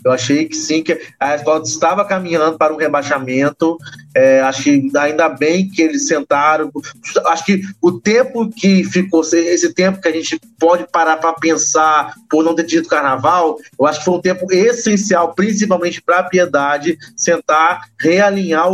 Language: Portuguese